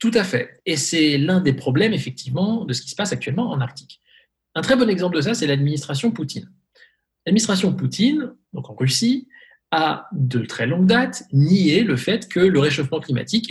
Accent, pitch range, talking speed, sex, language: French, 135-215 Hz, 190 wpm, male, French